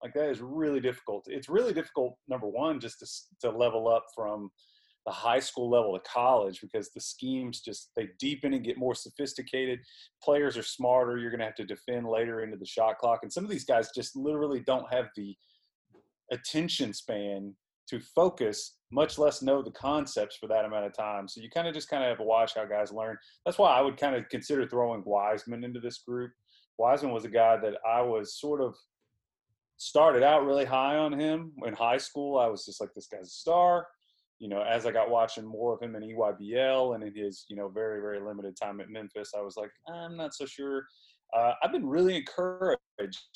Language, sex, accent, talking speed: English, male, American, 215 wpm